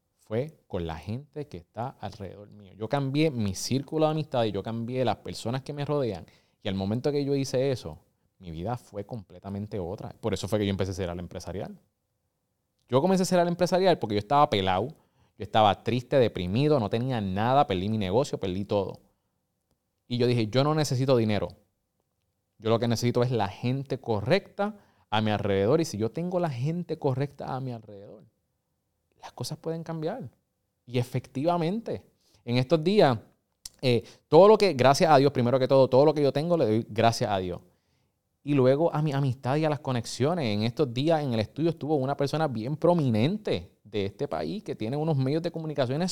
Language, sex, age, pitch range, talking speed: Spanish, male, 30-49, 105-150 Hz, 200 wpm